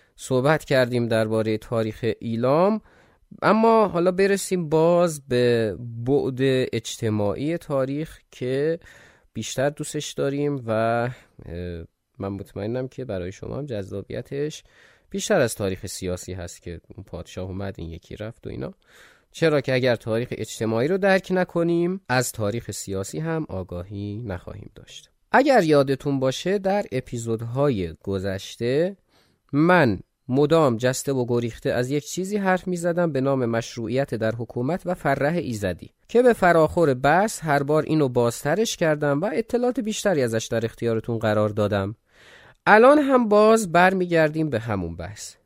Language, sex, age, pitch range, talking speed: Persian, male, 20-39, 110-160 Hz, 135 wpm